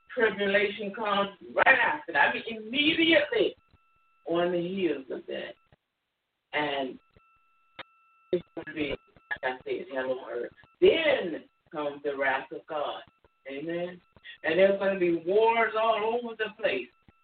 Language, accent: English, American